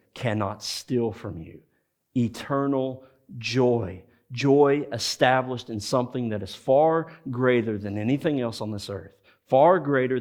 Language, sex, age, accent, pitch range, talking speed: English, male, 40-59, American, 110-135 Hz, 130 wpm